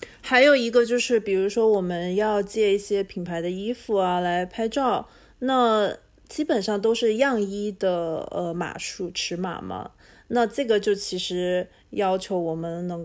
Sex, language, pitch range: female, Chinese, 180-220 Hz